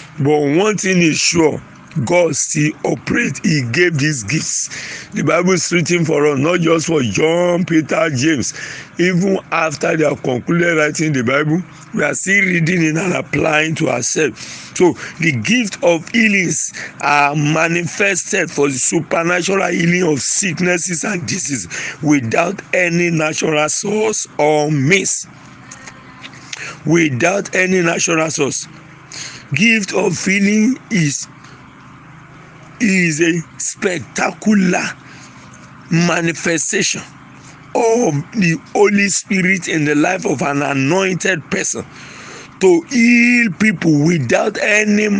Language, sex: English, male